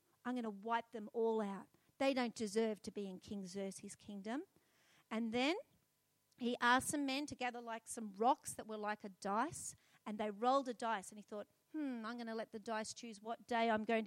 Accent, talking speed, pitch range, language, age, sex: Australian, 220 wpm, 210-300 Hz, English, 40-59, female